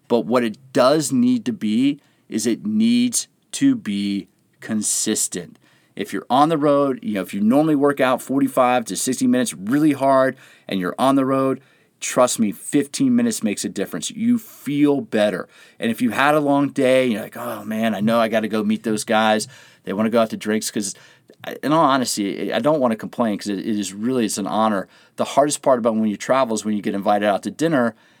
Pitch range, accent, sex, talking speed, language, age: 105-140 Hz, American, male, 220 wpm, English, 40-59